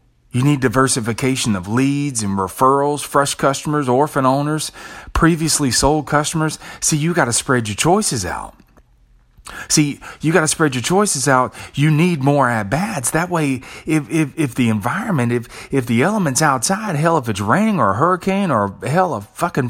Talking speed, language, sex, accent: 175 wpm, English, male, American